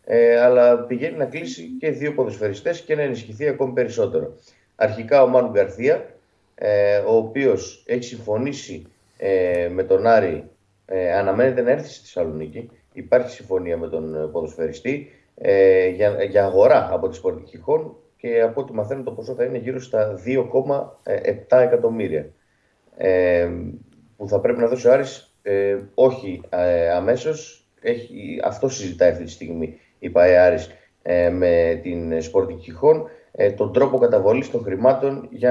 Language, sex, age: Greek, male, 30-49